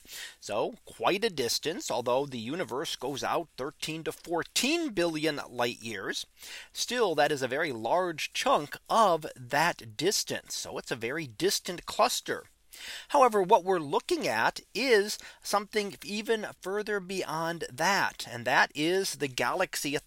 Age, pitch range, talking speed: 40-59, 140-215 Hz, 145 wpm